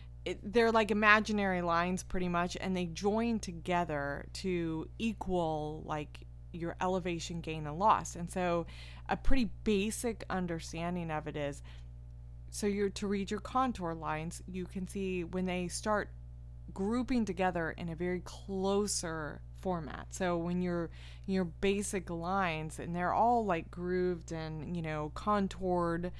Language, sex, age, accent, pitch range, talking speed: English, female, 20-39, American, 150-190 Hz, 145 wpm